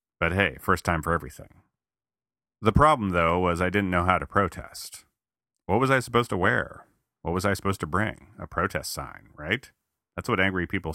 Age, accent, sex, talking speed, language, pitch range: 30-49, American, male, 195 wpm, English, 80-100 Hz